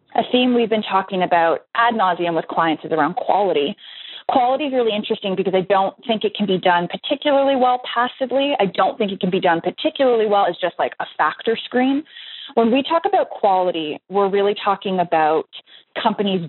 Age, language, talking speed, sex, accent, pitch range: 20-39, English, 195 wpm, female, American, 175-230 Hz